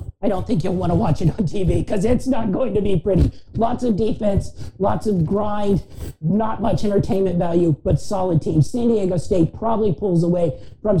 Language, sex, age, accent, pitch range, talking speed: English, male, 40-59, American, 160-210 Hz, 200 wpm